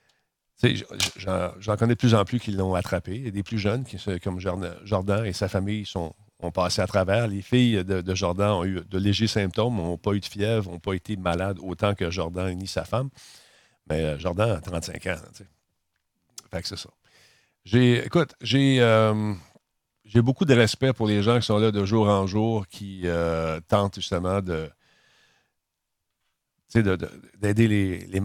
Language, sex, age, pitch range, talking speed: French, male, 50-69, 95-115 Hz, 200 wpm